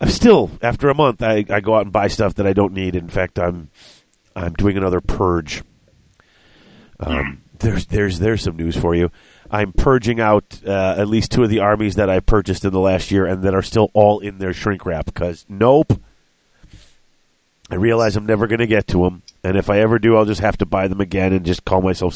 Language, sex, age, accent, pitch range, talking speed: English, male, 40-59, American, 90-110 Hz, 225 wpm